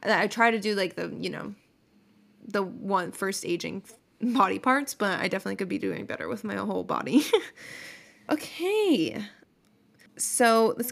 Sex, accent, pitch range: female, American, 190-230 Hz